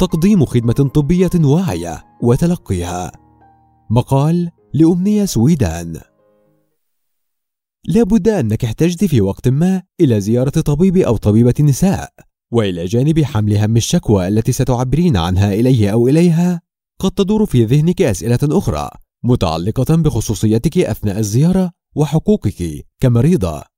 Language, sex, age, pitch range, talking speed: Arabic, male, 30-49, 110-175 Hz, 110 wpm